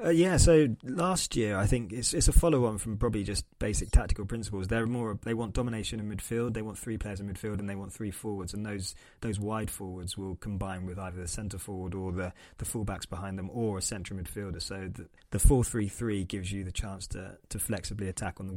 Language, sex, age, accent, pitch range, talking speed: English, male, 20-39, British, 95-115 Hz, 230 wpm